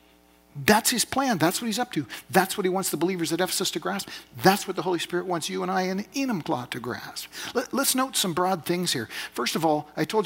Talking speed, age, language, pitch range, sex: 245 wpm, 50-69, English, 140-185 Hz, male